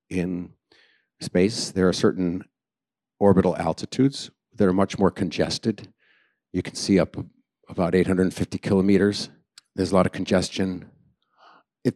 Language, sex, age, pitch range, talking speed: English, male, 50-69, 90-105 Hz, 125 wpm